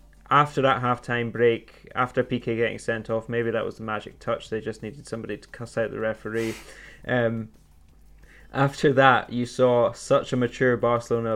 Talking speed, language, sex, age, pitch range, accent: 175 wpm, English, male, 10-29, 110-125 Hz, British